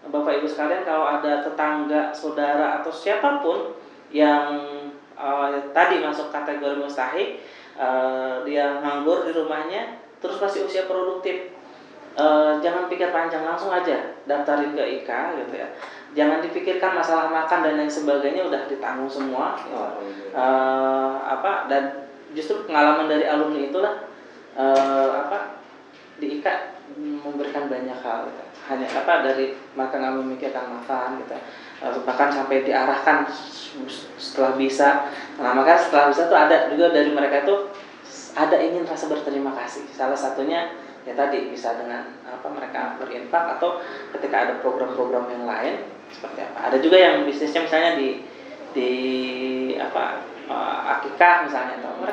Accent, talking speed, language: native, 135 wpm, Indonesian